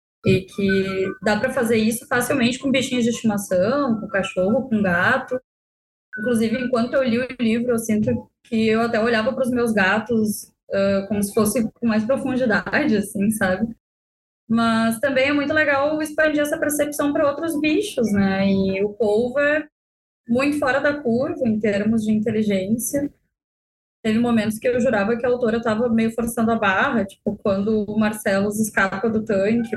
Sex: female